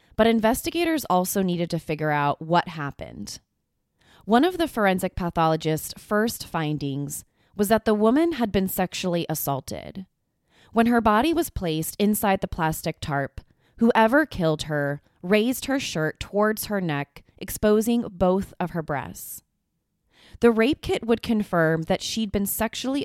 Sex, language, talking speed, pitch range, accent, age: female, English, 145 wpm, 160-225 Hz, American, 20-39